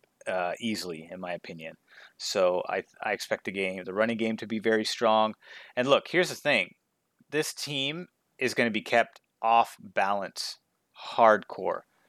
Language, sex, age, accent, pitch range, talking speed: English, male, 30-49, American, 110-130 Hz, 160 wpm